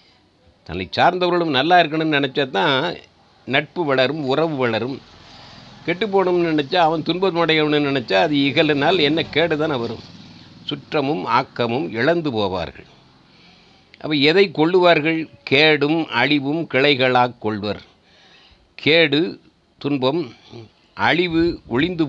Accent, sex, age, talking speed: native, male, 60-79, 100 wpm